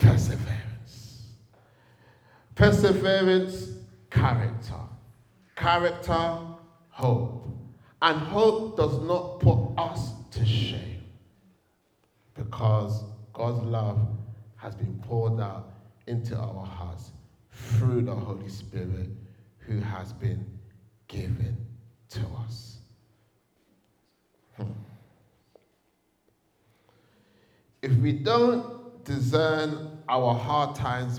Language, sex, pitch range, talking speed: English, male, 110-125 Hz, 75 wpm